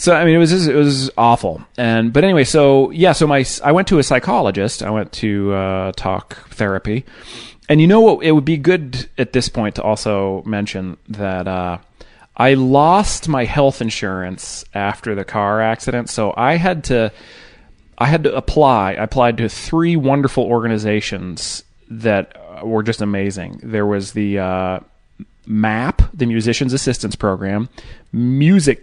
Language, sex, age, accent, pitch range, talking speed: English, male, 30-49, American, 100-130 Hz, 165 wpm